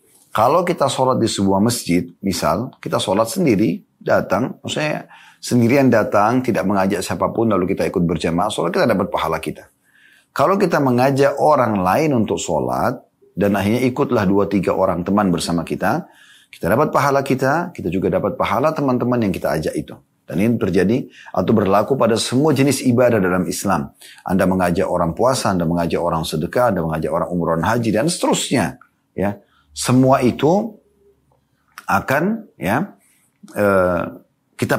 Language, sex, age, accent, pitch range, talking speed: Indonesian, male, 30-49, native, 100-140 Hz, 150 wpm